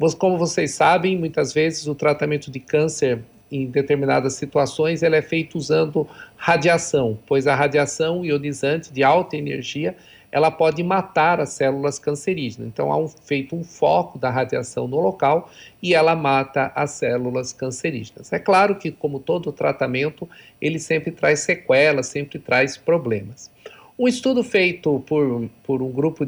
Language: Portuguese